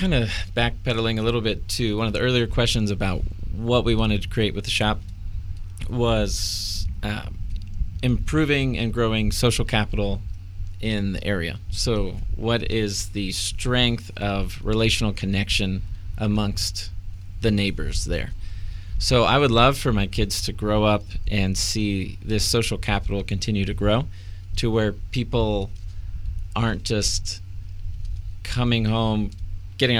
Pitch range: 95-115 Hz